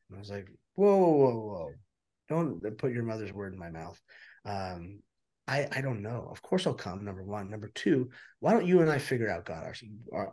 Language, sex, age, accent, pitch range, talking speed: English, male, 30-49, American, 100-130 Hz, 215 wpm